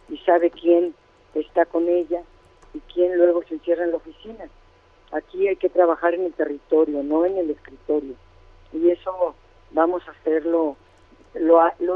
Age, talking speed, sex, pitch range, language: 50-69, 165 wpm, female, 155-180 Hz, Spanish